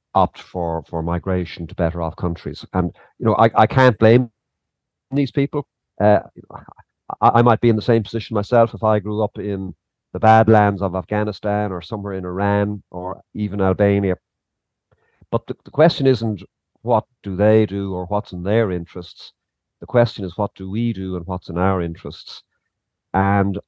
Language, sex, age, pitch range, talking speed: English, male, 50-69, 90-115 Hz, 180 wpm